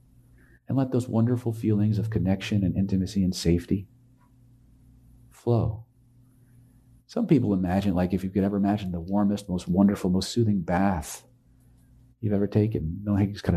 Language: English